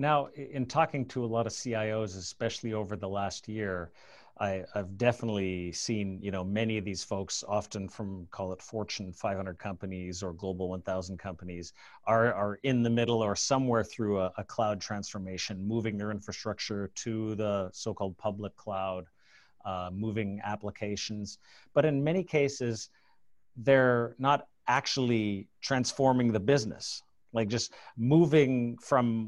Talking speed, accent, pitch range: 145 wpm, American, 100-125 Hz